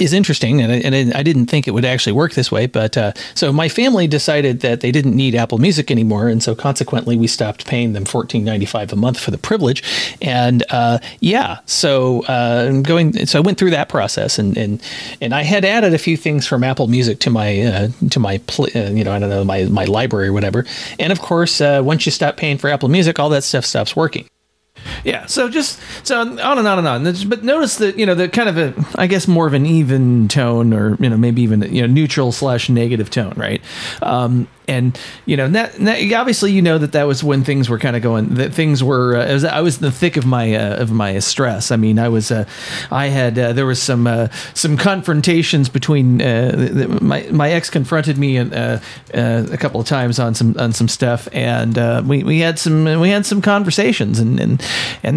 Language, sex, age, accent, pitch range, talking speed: English, male, 40-59, American, 115-160 Hz, 235 wpm